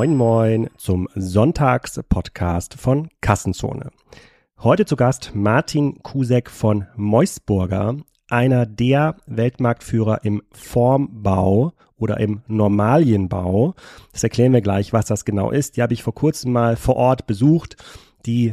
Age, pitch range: 30-49, 105-130 Hz